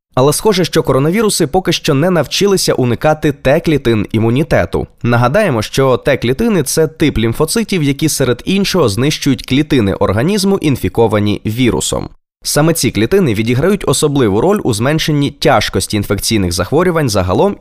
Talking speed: 130 wpm